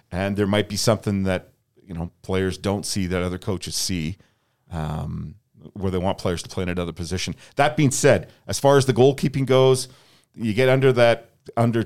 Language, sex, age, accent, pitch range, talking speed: English, male, 40-59, American, 95-120 Hz, 195 wpm